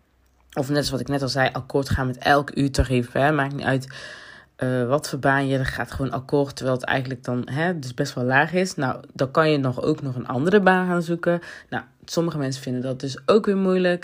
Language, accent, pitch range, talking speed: Dutch, Dutch, 130-160 Hz, 245 wpm